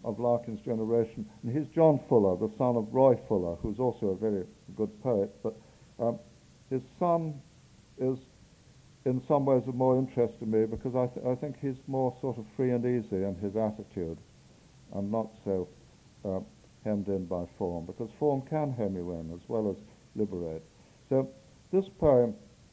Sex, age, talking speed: male, 60-79, 175 wpm